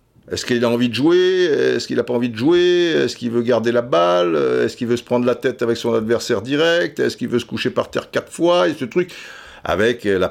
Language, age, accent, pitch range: French, 50-69, French, 80-130 Hz